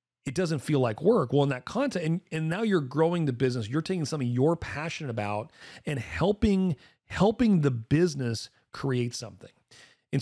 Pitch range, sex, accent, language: 115-160 Hz, male, American, English